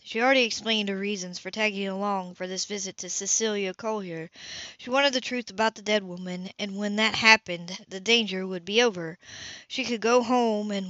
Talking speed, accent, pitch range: 200 wpm, American, 190-225 Hz